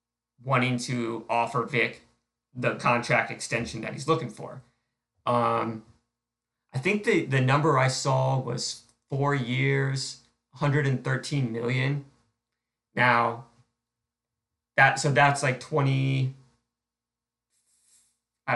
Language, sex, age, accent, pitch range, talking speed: English, male, 30-49, American, 115-135 Hz, 95 wpm